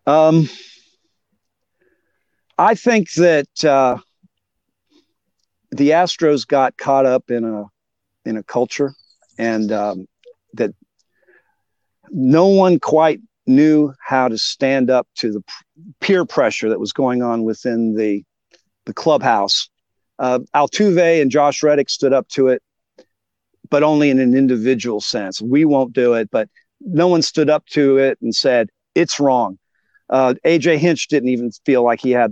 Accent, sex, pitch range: American, male, 120-165 Hz